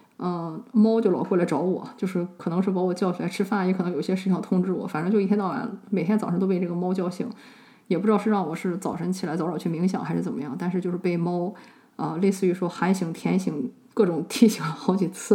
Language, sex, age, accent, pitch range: Chinese, female, 20-39, native, 185-230 Hz